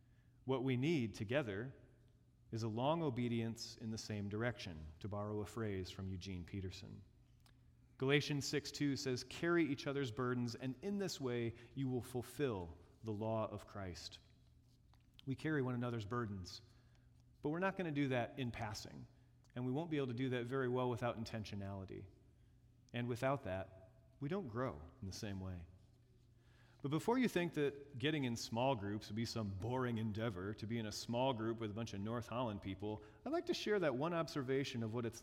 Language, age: English, 40-59